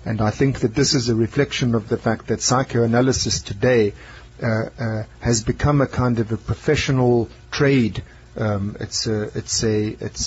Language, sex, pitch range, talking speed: English, male, 110-130 Hz, 175 wpm